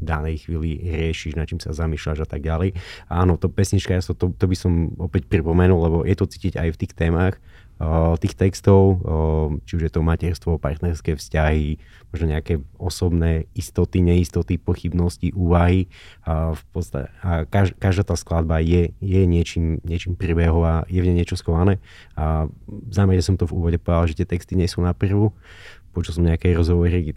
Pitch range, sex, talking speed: 80-95 Hz, male, 180 wpm